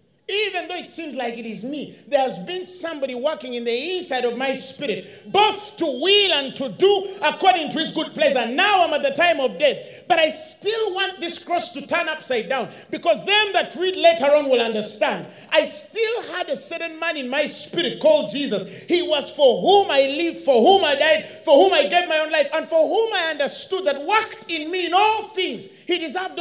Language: English